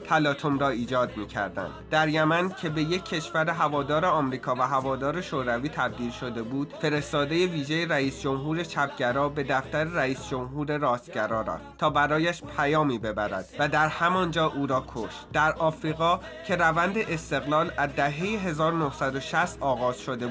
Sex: male